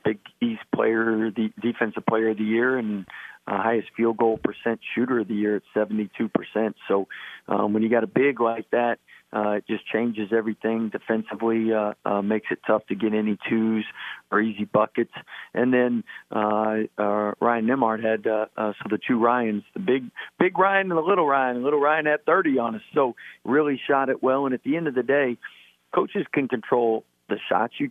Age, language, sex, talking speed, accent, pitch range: 50-69, English, male, 200 wpm, American, 110-130 Hz